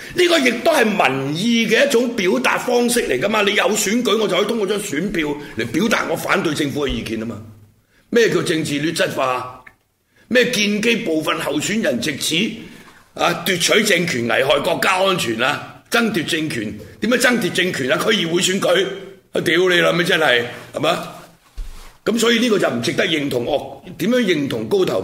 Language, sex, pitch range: Chinese, male, 125-210 Hz